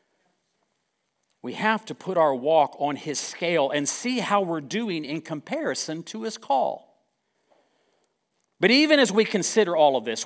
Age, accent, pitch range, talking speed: 50-69, American, 155-225 Hz, 160 wpm